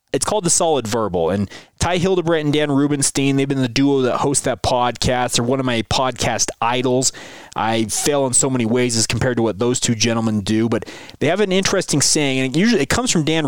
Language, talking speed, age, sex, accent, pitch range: English, 225 wpm, 30-49, male, American, 125-165 Hz